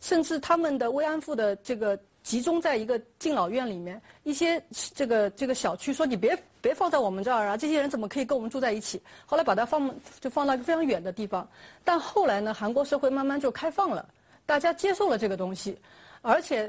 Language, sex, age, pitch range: Chinese, female, 30-49, 215-310 Hz